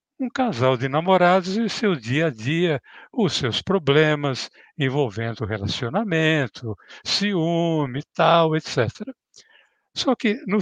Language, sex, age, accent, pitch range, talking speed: Portuguese, male, 60-79, Brazilian, 130-190 Hz, 120 wpm